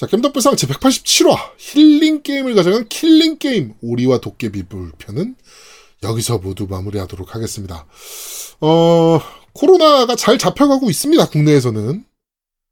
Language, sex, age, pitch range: Korean, male, 20-39, 105-170 Hz